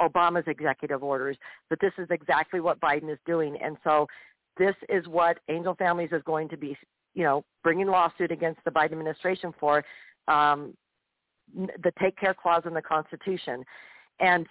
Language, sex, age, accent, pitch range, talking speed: English, female, 50-69, American, 155-185 Hz, 165 wpm